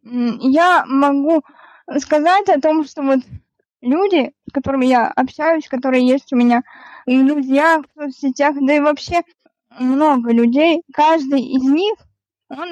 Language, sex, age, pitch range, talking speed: Russian, female, 20-39, 260-310 Hz, 135 wpm